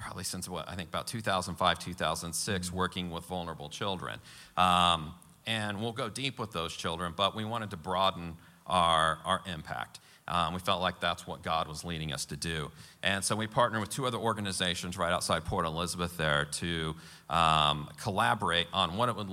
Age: 40-59